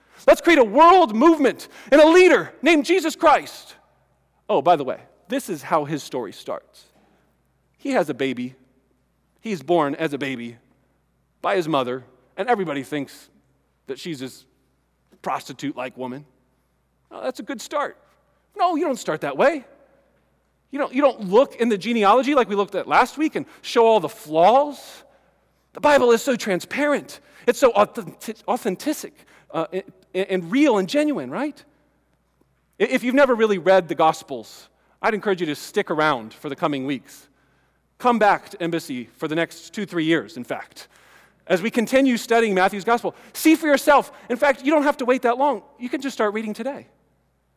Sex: male